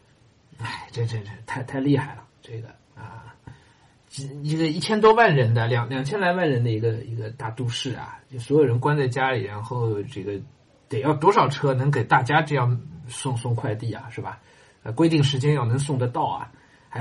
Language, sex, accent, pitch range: Chinese, male, native, 115-145 Hz